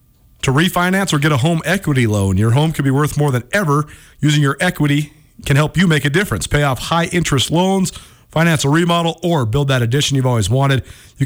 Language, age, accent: English, 30-49, American